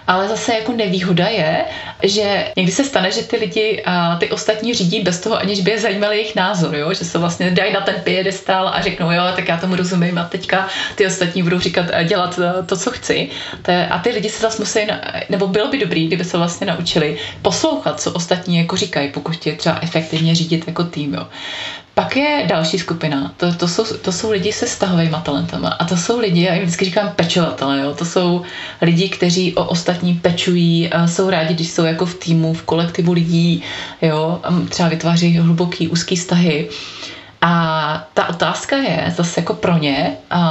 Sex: female